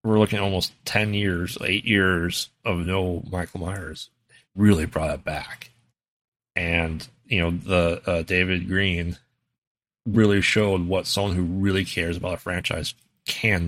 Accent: American